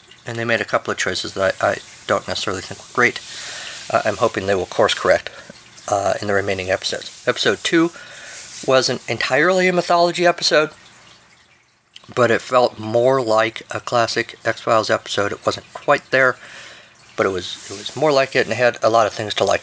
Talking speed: 195 wpm